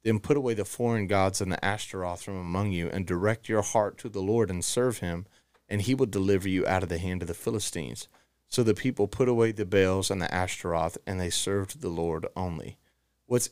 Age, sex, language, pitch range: 30-49, male, English, 95-115 Hz